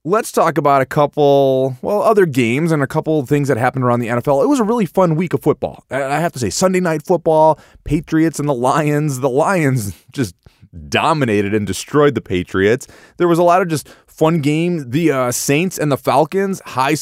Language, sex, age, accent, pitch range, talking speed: English, male, 20-39, American, 110-160 Hz, 210 wpm